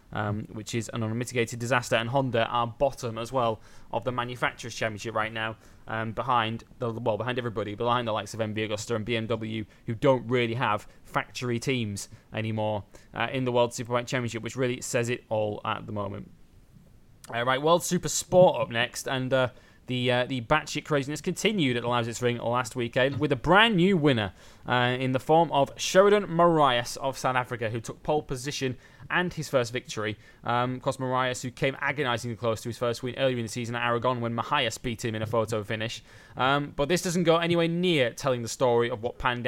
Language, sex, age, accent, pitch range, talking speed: English, male, 20-39, British, 115-140 Hz, 205 wpm